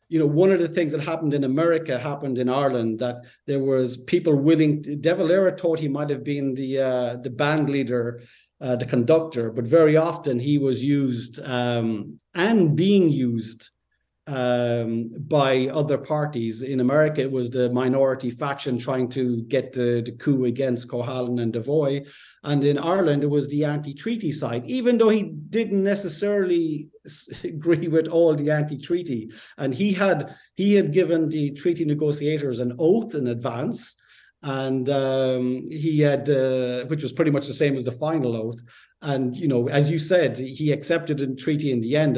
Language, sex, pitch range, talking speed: English, male, 130-165 Hz, 175 wpm